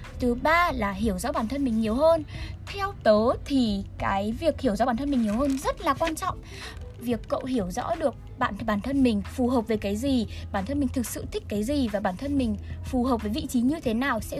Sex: female